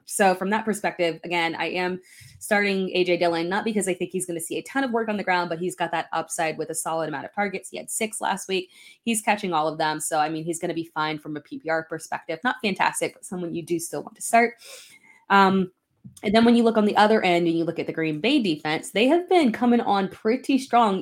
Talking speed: 265 wpm